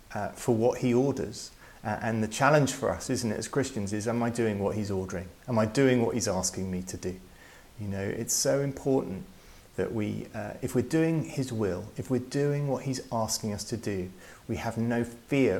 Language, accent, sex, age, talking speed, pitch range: English, British, male, 30-49, 220 wpm, 105-125 Hz